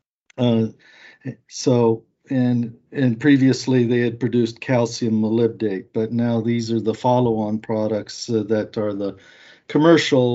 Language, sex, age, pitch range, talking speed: English, male, 50-69, 110-125 Hz, 130 wpm